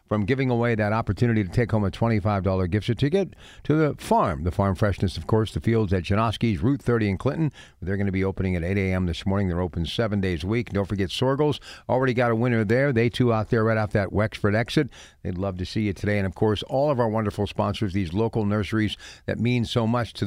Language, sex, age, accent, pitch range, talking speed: English, male, 50-69, American, 100-130 Hz, 245 wpm